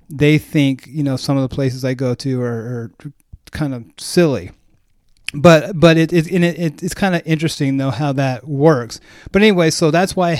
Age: 30-49